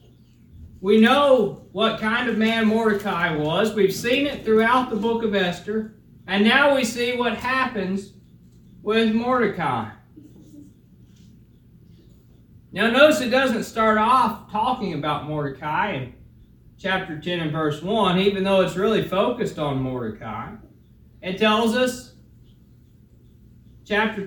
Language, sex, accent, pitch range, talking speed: English, male, American, 165-225 Hz, 125 wpm